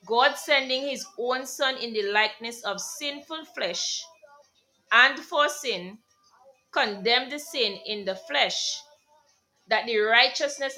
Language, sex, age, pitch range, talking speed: English, female, 30-49, 220-305 Hz, 130 wpm